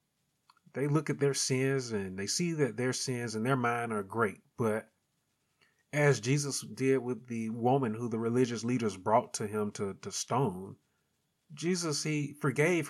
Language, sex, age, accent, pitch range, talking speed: English, male, 30-49, American, 120-155 Hz, 165 wpm